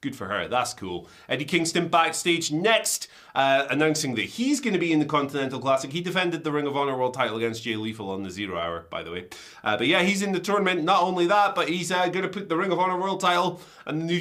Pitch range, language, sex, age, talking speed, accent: 130-170 Hz, English, male, 30-49, 260 wpm, British